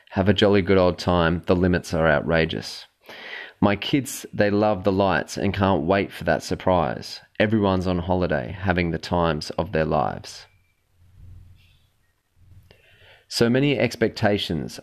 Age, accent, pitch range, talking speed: 30-49, Australian, 90-110 Hz, 140 wpm